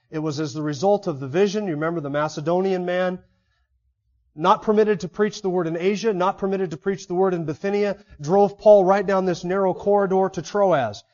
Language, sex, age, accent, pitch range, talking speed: English, male, 30-49, American, 160-210 Hz, 205 wpm